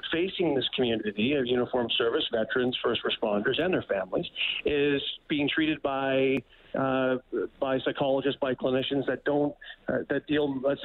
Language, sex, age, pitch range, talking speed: English, male, 40-59, 120-135 Hz, 150 wpm